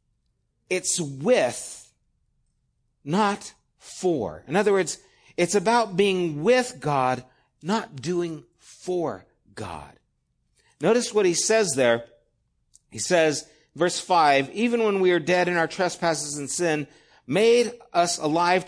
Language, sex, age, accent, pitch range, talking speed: English, male, 50-69, American, 165-240 Hz, 120 wpm